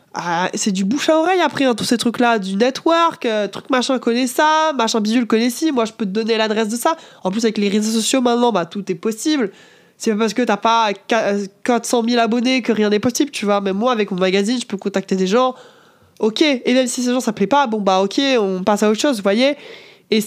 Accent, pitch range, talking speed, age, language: French, 215-290 Hz, 255 wpm, 20-39, French